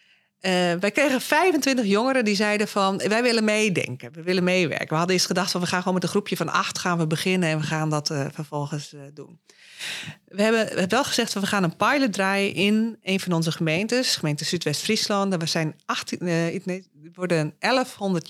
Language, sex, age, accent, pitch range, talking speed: Dutch, female, 40-59, Dutch, 155-200 Hz, 200 wpm